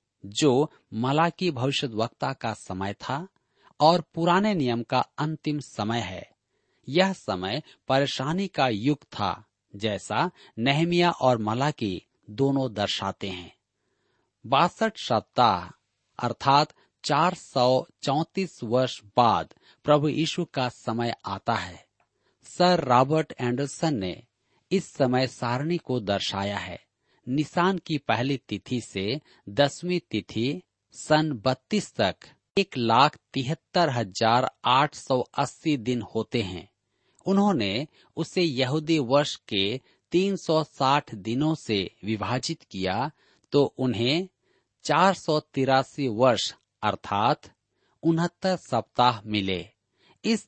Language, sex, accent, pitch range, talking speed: Hindi, male, native, 115-160 Hz, 95 wpm